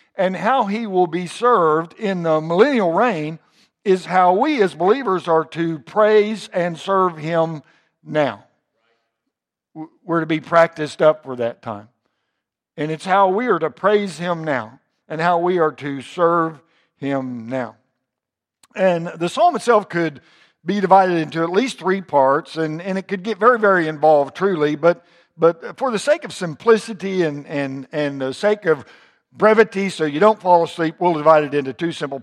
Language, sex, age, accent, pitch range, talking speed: English, male, 60-79, American, 160-210 Hz, 175 wpm